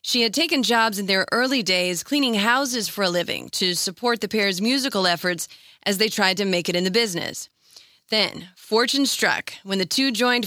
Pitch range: 185-245 Hz